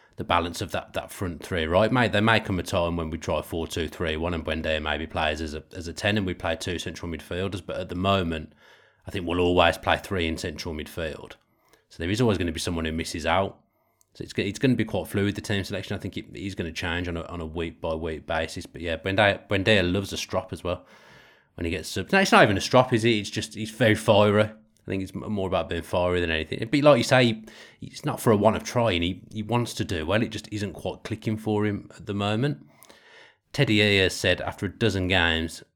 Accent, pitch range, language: British, 85-105 Hz, English